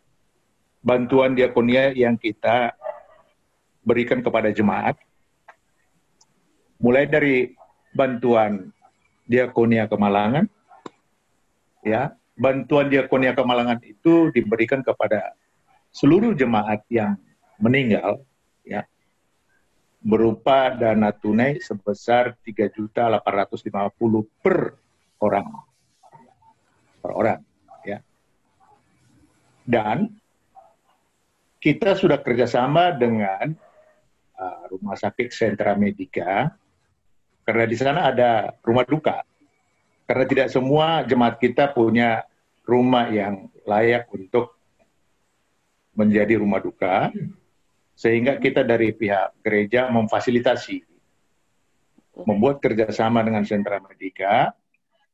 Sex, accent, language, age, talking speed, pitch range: male, native, Indonesian, 50-69, 80 wpm, 105-130 Hz